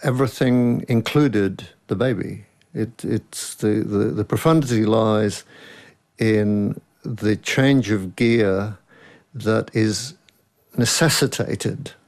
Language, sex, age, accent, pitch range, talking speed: English, male, 50-69, British, 95-115 Hz, 95 wpm